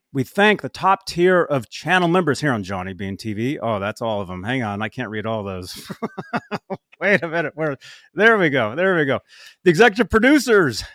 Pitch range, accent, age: 110-175 Hz, American, 30-49